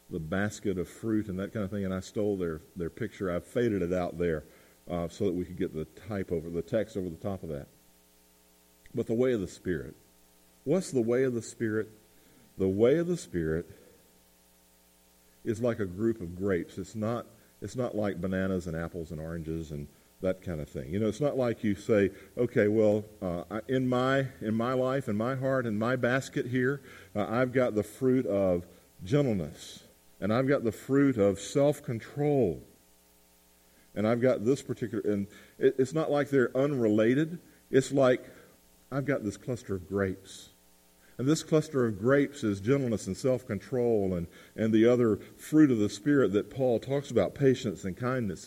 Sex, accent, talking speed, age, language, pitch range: male, American, 190 wpm, 50-69, English, 80-125 Hz